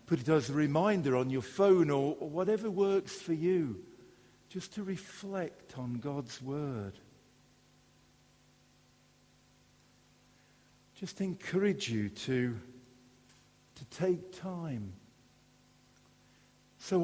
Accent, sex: British, male